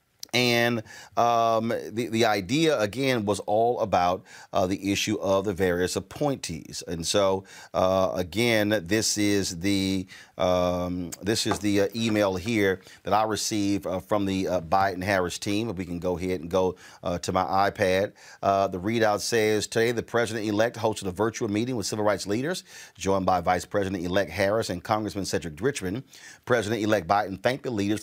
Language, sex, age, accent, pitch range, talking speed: English, male, 40-59, American, 95-110 Hz, 165 wpm